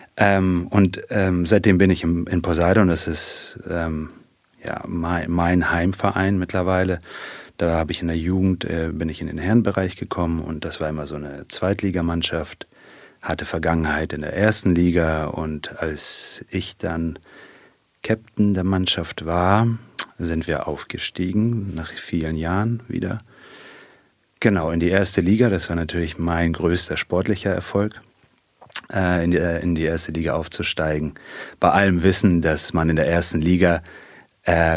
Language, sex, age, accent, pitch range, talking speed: German, male, 30-49, German, 80-95 Hz, 140 wpm